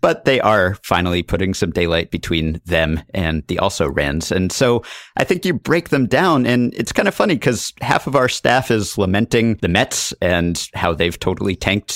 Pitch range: 90-120 Hz